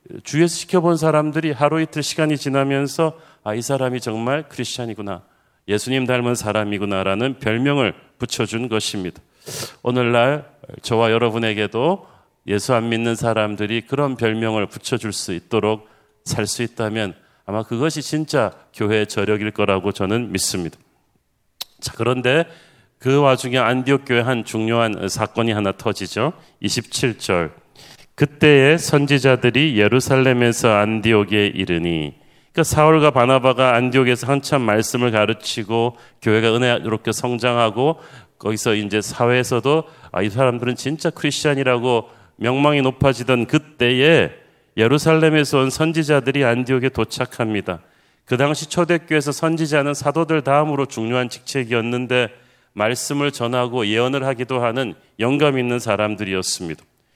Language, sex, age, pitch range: Korean, male, 40-59, 110-140 Hz